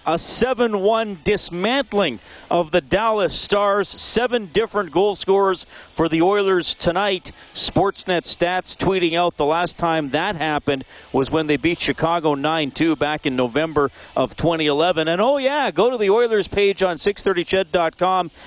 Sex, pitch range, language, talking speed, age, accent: male, 135-175 Hz, English, 145 wpm, 40-59, American